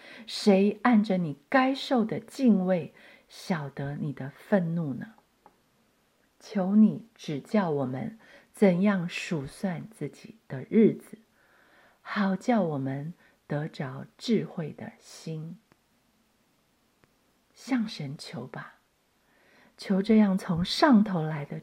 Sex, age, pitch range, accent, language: female, 50-69, 185-235 Hz, native, Chinese